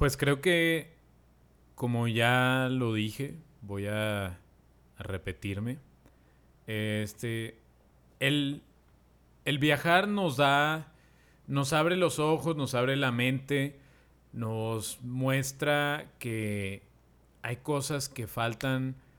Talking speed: 100 wpm